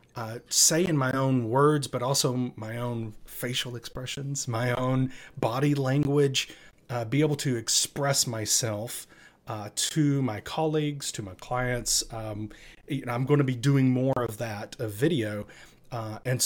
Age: 30-49